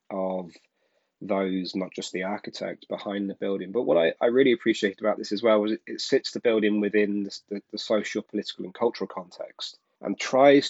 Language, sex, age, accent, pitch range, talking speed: English, male, 30-49, British, 95-110 Hz, 195 wpm